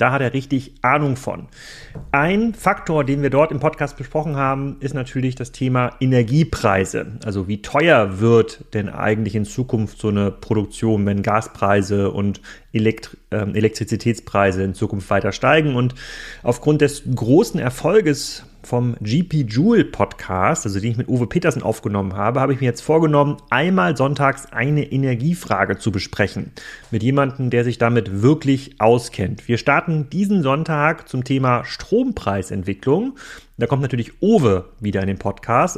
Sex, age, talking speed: male, 30-49, 150 wpm